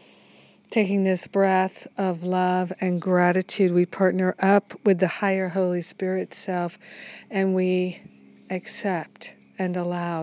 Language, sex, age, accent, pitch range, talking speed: English, female, 50-69, American, 175-195 Hz, 125 wpm